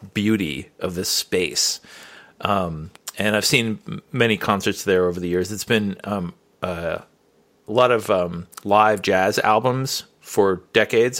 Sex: male